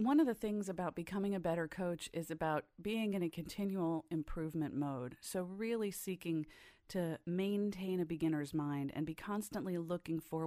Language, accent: English, American